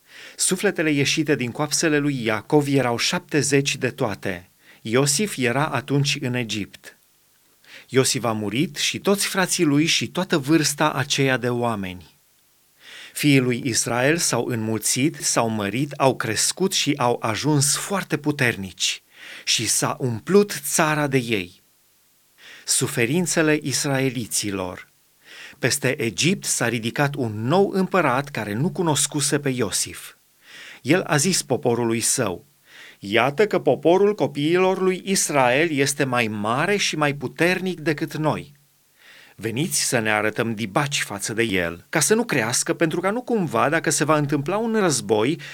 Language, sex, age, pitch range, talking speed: Romanian, male, 30-49, 120-165 Hz, 135 wpm